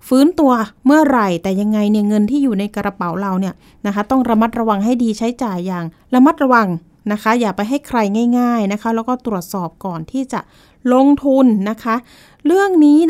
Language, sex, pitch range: Thai, female, 205-260 Hz